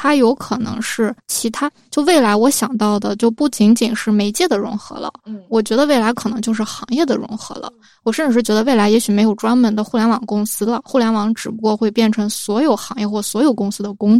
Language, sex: Chinese, female